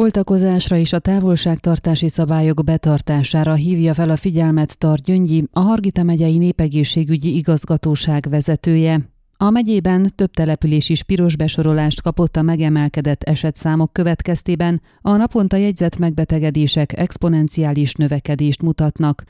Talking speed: 115 wpm